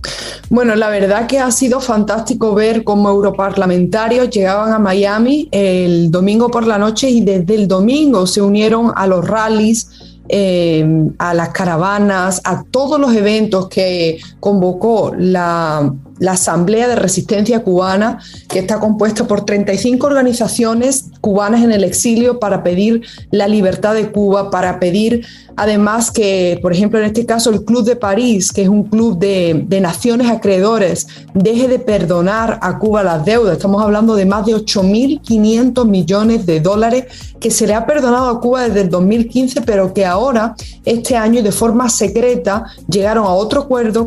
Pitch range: 190-230 Hz